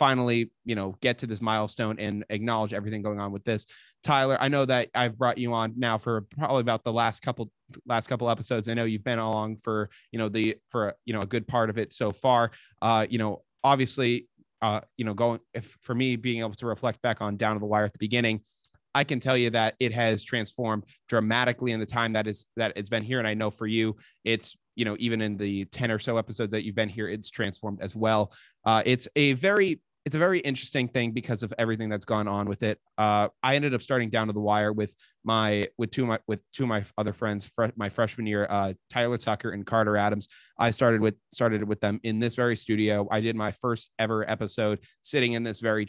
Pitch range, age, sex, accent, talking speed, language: 105-120 Hz, 20-39, male, American, 240 wpm, English